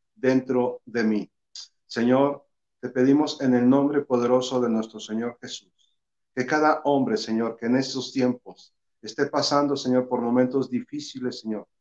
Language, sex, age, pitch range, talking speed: Spanish, male, 50-69, 125-150 Hz, 145 wpm